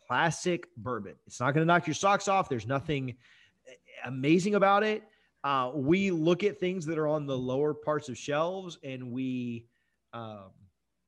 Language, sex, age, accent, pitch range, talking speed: English, male, 30-49, American, 125-170 Hz, 170 wpm